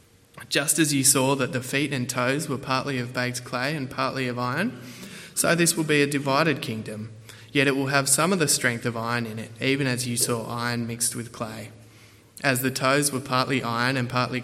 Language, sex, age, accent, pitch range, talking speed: English, male, 20-39, Australian, 120-140 Hz, 220 wpm